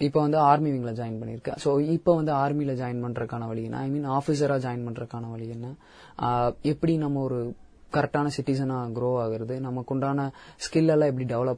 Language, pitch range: Tamil, 120-150 Hz